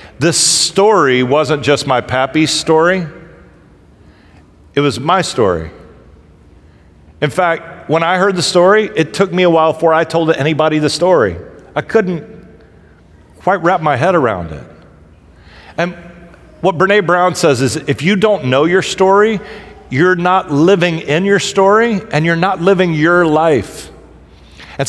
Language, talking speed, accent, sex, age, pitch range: English, 150 wpm, American, male, 40-59, 120-170 Hz